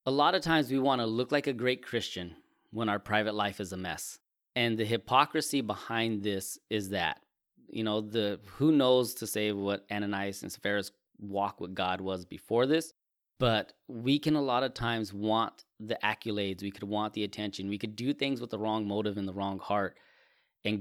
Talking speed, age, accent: 205 wpm, 20-39, American